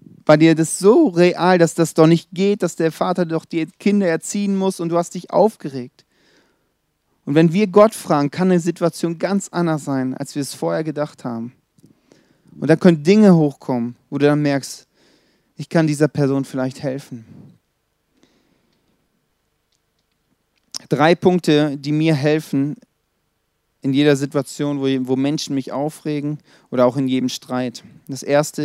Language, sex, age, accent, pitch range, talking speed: German, male, 40-59, German, 135-170 Hz, 155 wpm